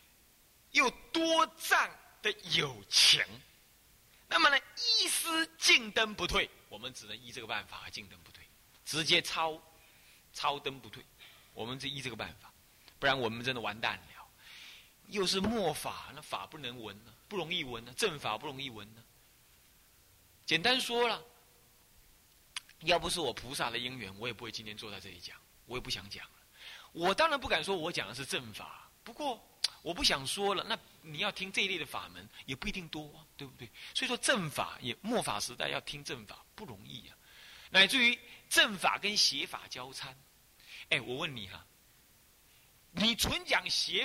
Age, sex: 30-49, male